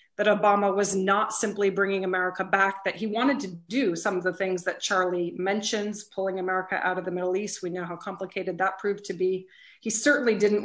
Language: English